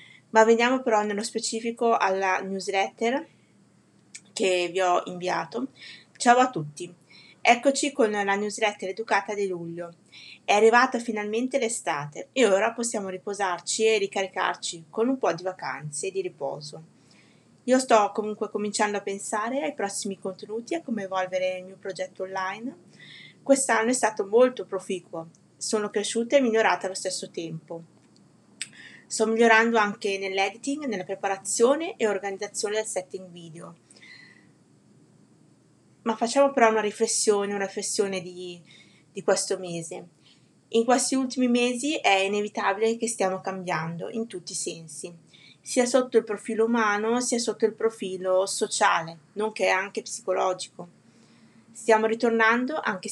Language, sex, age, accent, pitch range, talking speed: English, female, 20-39, Italian, 185-225 Hz, 135 wpm